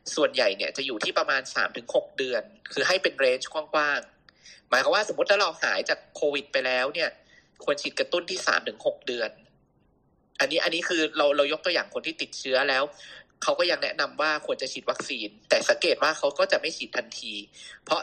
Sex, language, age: male, Thai, 20-39